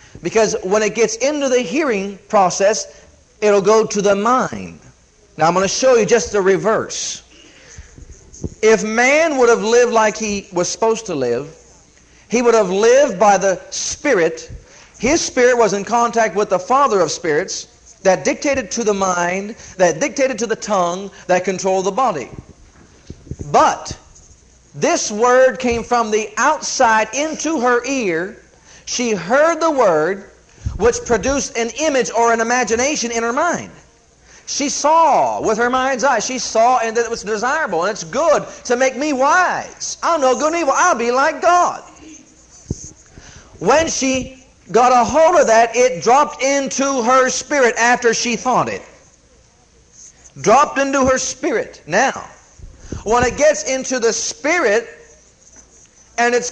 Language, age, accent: English, 50-69, American